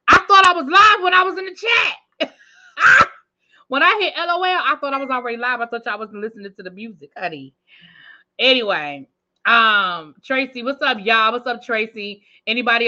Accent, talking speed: American, 185 wpm